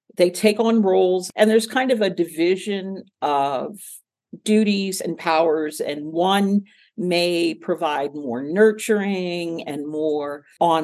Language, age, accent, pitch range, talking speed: English, 50-69, American, 160-200 Hz, 125 wpm